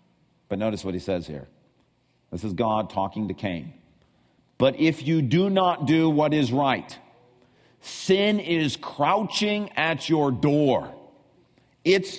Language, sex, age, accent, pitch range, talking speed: English, male, 50-69, American, 125-185 Hz, 140 wpm